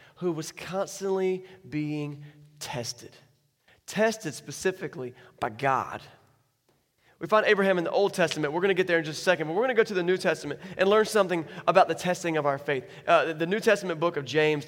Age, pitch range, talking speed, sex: 20-39, 145-200 Hz, 205 wpm, male